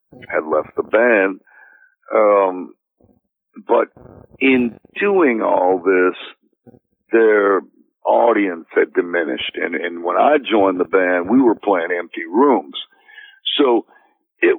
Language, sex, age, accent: English, male, 60-79, American